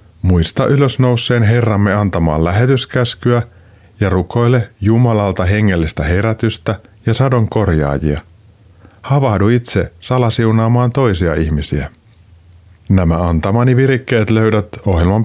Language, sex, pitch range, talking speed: Finnish, male, 90-115 Hz, 90 wpm